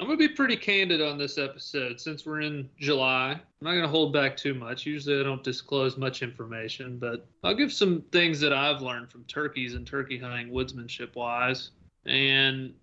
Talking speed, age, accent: 195 wpm, 30-49, American